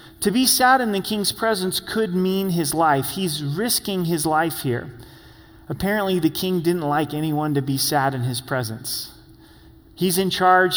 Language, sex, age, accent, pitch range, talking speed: English, male, 30-49, American, 145-185 Hz, 175 wpm